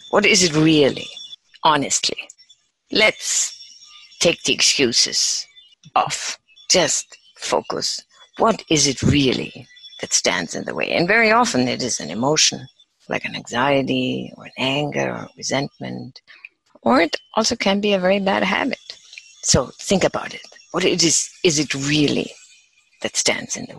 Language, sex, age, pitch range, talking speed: English, female, 50-69, 145-210 Hz, 145 wpm